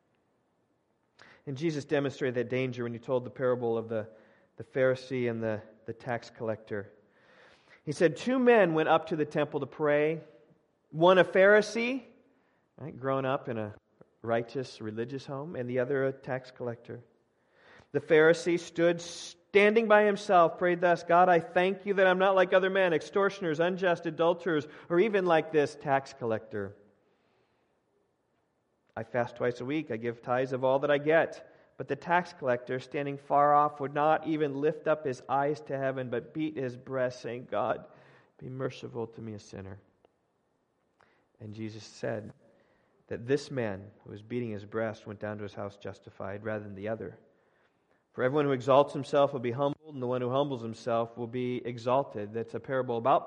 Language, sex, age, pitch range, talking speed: English, male, 40-59, 115-155 Hz, 175 wpm